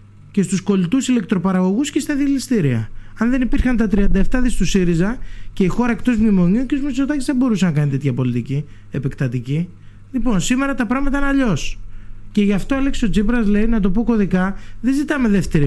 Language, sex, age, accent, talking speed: Greek, male, 20-39, native, 190 wpm